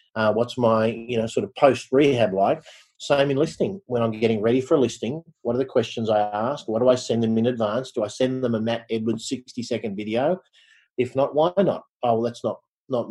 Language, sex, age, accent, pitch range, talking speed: English, male, 40-59, Australian, 115-140 Hz, 230 wpm